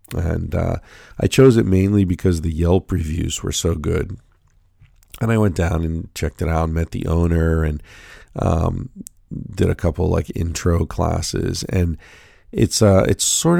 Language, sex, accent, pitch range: English, male, American, 85-105 Hz